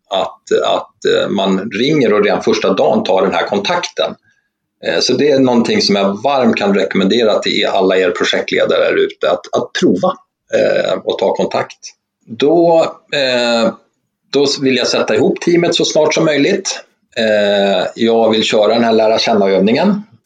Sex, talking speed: male, 150 wpm